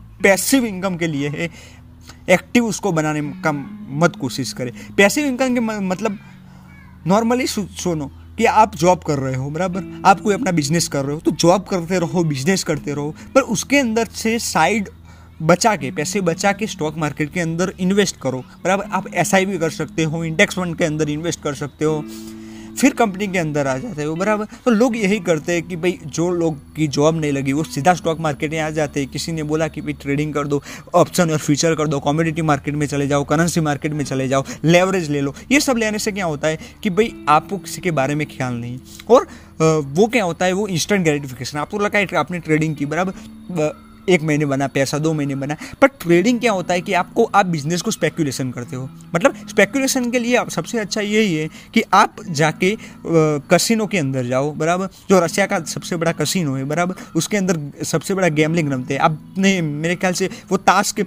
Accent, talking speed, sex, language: native, 210 wpm, male, Hindi